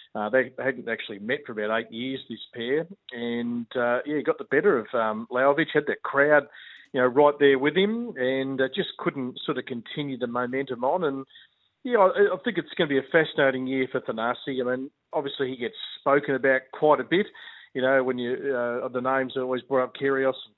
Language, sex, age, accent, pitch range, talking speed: English, male, 40-59, Australian, 125-145 Hz, 225 wpm